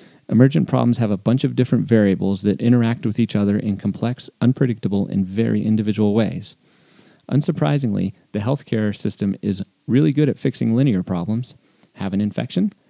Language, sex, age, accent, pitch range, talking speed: English, male, 30-49, American, 105-125 Hz, 160 wpm